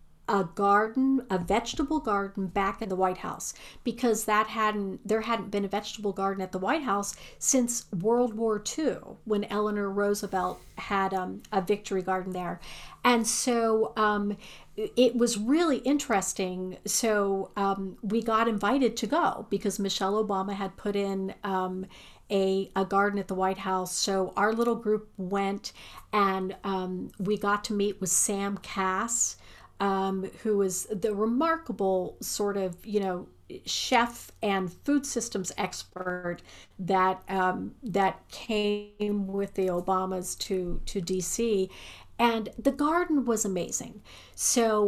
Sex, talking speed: female, 145 wpm